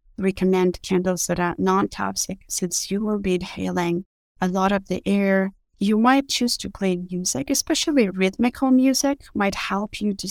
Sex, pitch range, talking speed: female, 185-250 Hz, 165 wpm